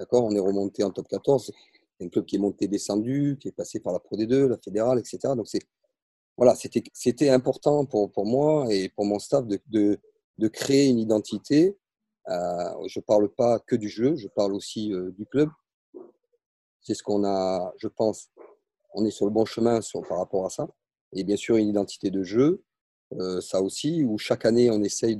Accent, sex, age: French, male, 40-59